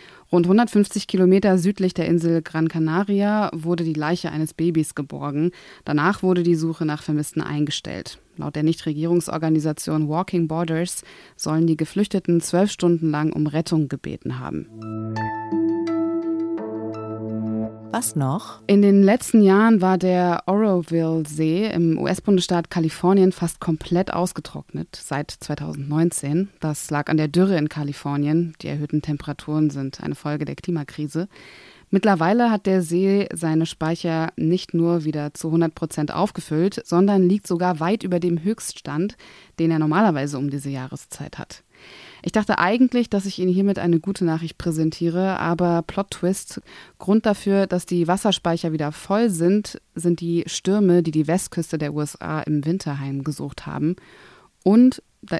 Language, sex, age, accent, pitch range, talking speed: German, female, 20-39, German, 155-190 Hz, 140 wpm